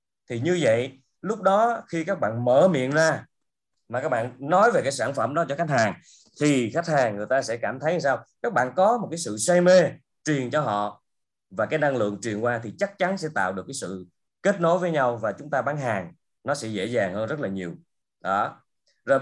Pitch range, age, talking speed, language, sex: 115-170 Hz, 20-39, 240 wpm, Vietnamese, male